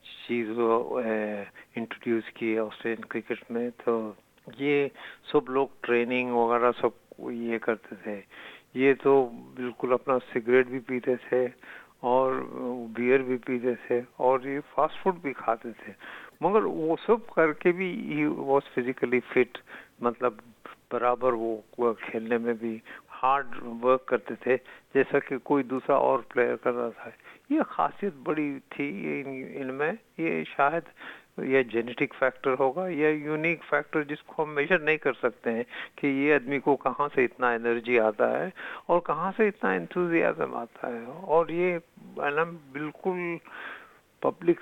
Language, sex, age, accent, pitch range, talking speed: Hindi, male, 50-69, native, 120-150 Hz, 145 wpm